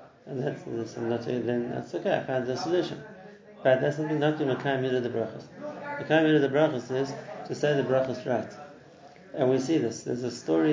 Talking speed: 215 wpm